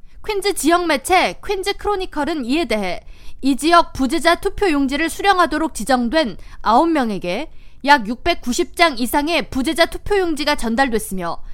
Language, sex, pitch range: Korean, female, 255-365 Hz